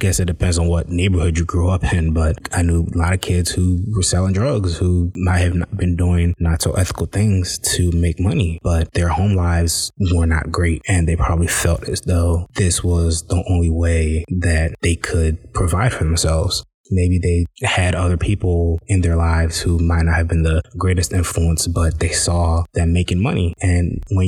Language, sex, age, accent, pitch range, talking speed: English, male, 20-39, American, 85-95 Hz, 205 wpm